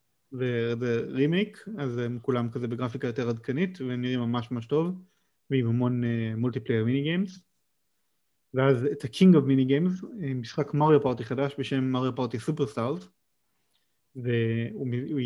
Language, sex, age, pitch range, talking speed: Hebrew, male, 30-49, 125-155 Hz, 135 wpm